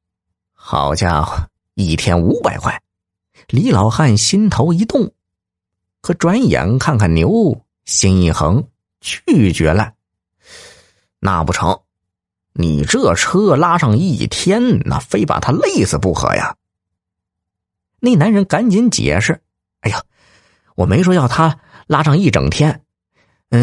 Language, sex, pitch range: Chinese, male, 90-145 Hz